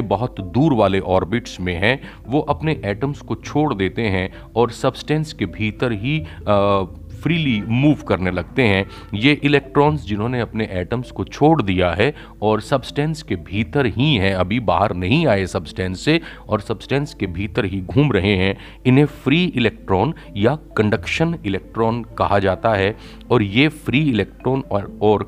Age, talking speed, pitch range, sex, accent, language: 40-59, 160 wpm, 100-135 Hz, male, native, Hindi